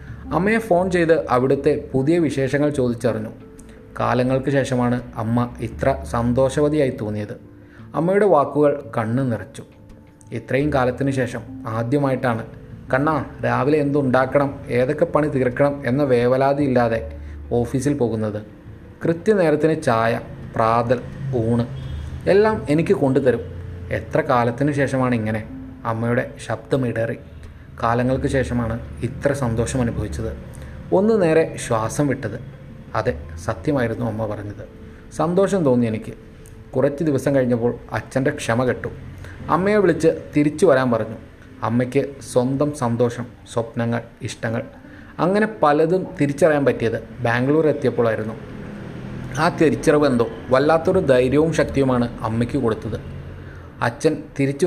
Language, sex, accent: Malayalam, male, native